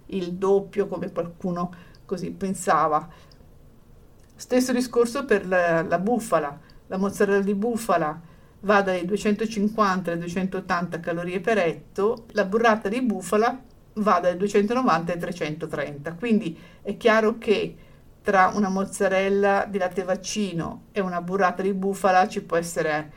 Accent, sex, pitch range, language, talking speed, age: native, female, 170-210 Hz, Italian, 130 wpm, 50-69